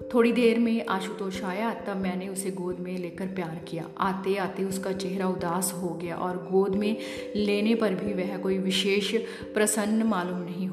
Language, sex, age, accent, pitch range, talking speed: Hindi, female, 30-49, native, 185-230 Hz, 180 wpm